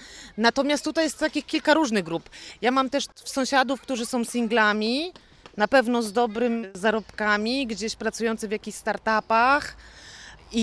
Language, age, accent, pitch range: Polish, 30-49, native, 190-235 Hz